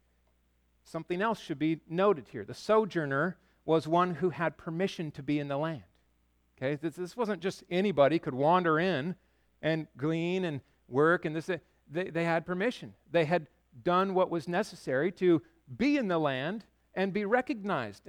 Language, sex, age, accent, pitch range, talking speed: English, male, 50-69, American, 140-200 Hz, 170 wpm